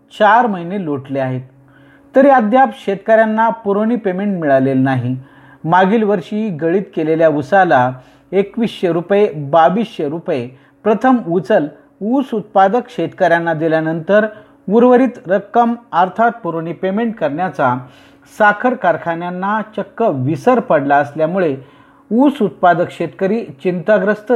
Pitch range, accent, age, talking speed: 145-220 Hz, native, 40-59, 95 wpm